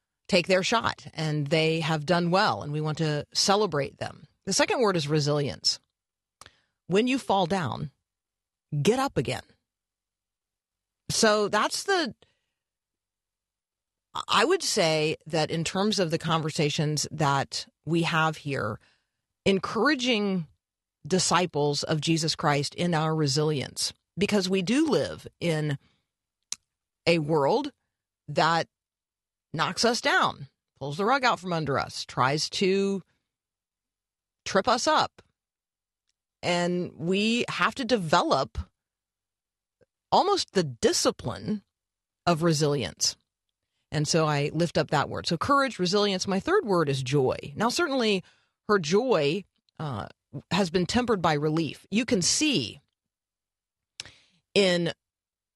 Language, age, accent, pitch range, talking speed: English, 40-59, American, 145-195 Hz, 120 wpm